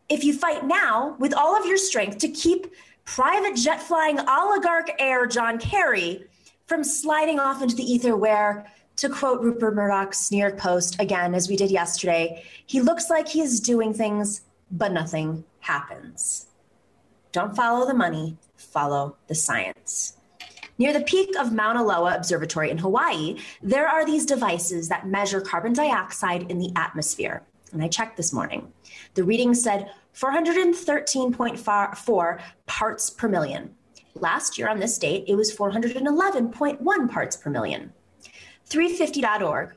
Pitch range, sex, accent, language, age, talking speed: 180-285 Hz, female, American, English, 20-39, 145 wpm